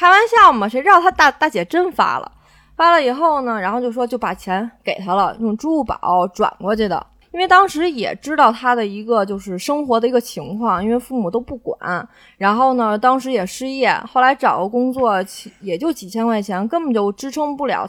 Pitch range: 215-300 Hz